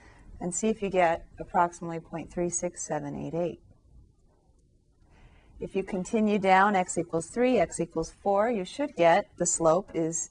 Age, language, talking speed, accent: 40-59, English, 135 wpm, American